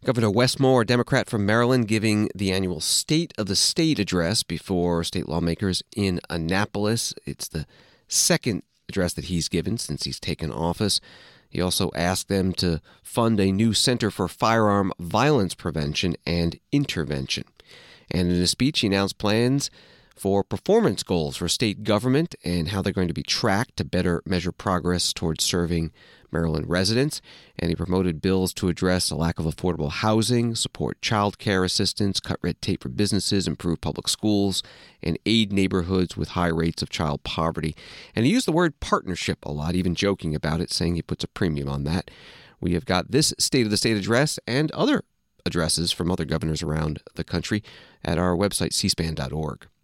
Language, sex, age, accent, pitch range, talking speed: English, male, 40-59, American, 85-105 Hz, 175 wpm